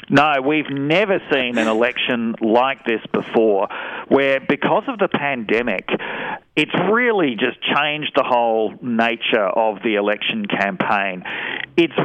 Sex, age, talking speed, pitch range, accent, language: male, 50-69, 130 wpm, 110-135 Hz, Australian, English